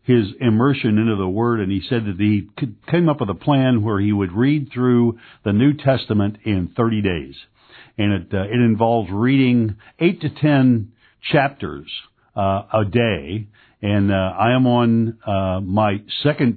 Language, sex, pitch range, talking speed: English, male, 100-125 Hz, 170 wpm